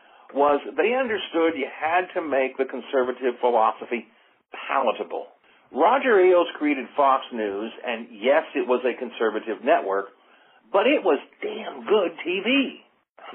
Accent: American